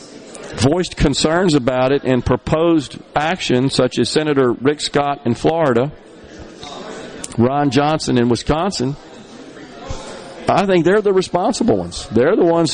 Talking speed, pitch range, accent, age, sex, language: 125 wpm, 125-185 Hz, American, 50-69, male, English